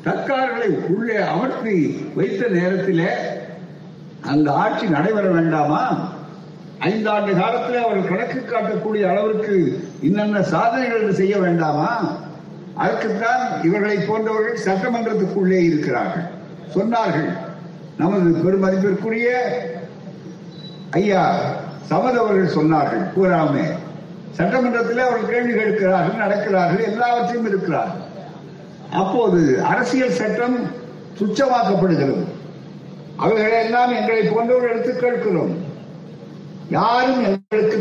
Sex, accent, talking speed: male, native, 70 wpm